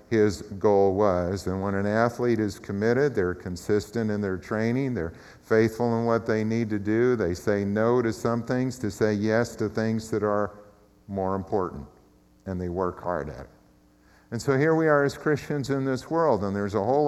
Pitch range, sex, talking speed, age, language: 95-120 Hz, male, 200 wpm, 50-69, English